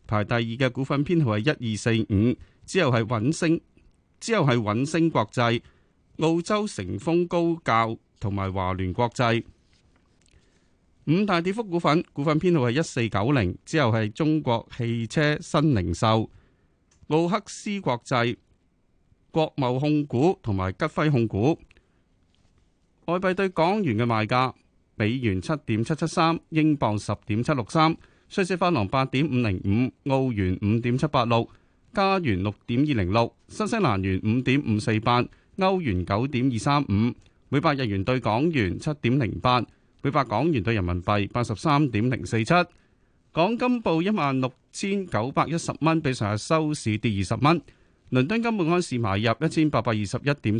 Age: 30-49